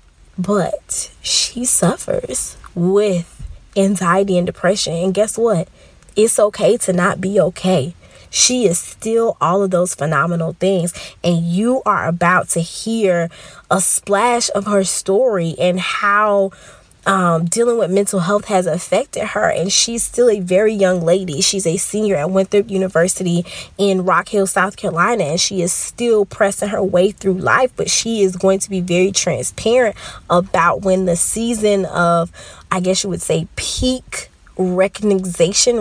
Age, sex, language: 20-39, female, English